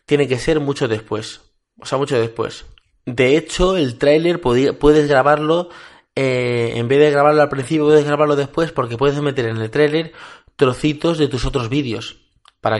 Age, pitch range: 20-39, 115-150 Hz